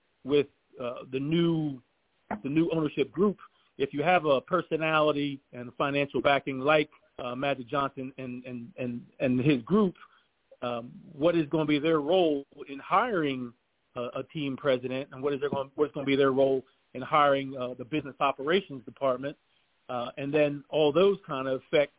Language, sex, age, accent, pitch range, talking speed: English, male, 40-59, American, 135-160 Hz, 175 wpm